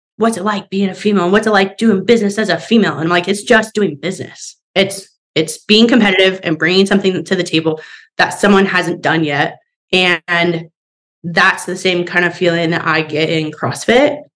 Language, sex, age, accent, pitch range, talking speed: English, female, 20-39, American, 165-195 Hz, 200 wpm